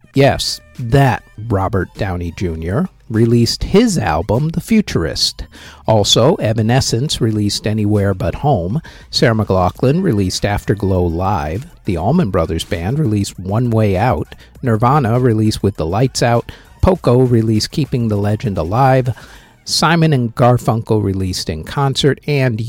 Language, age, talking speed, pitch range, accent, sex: English, 50-69, 125 wpm, 100-135 Hz, American, male